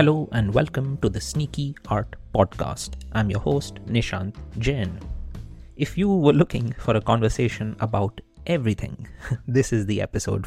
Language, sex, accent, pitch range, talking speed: English, male, Indian, 105-130 Hz, 150 wpm